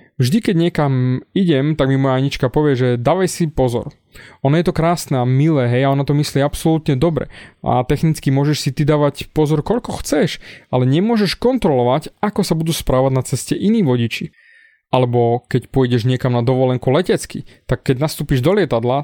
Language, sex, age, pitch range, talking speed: Slovak, male, 20-39, 135-190 Hz, 185 wpm